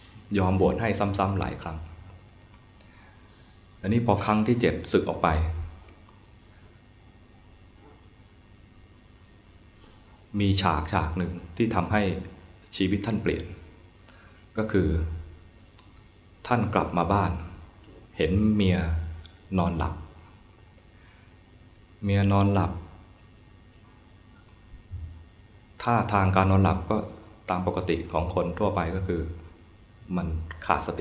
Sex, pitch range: male, 90-105 Hz